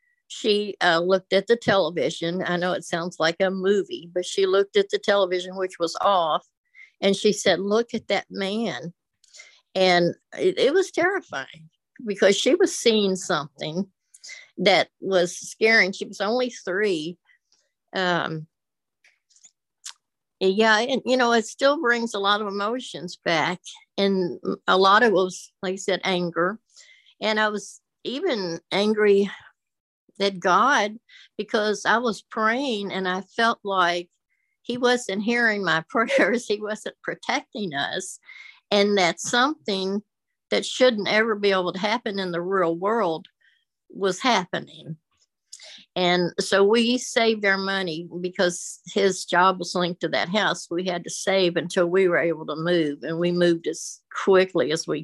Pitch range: 180-225 Hz